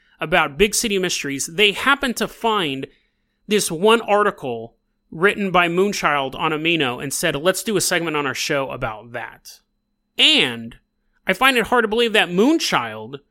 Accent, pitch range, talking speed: American, 155-210 Hz, 160 wpm